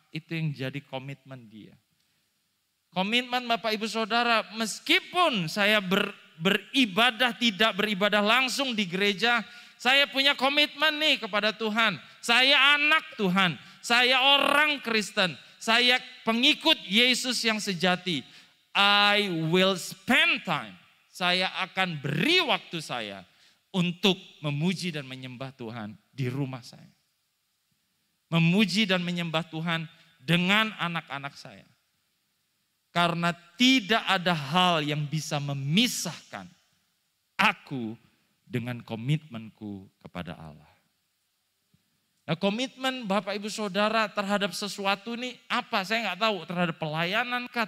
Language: Indonesian